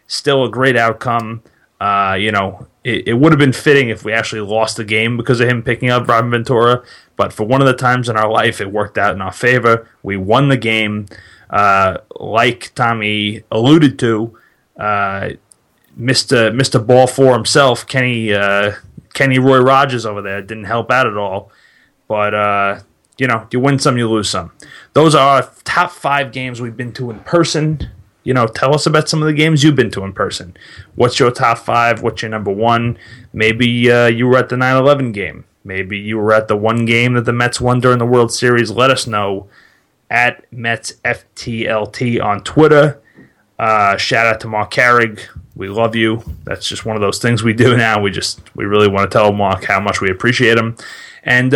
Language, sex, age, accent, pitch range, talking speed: English, male, 20-39, American, 105-130 Hz, 200 wpm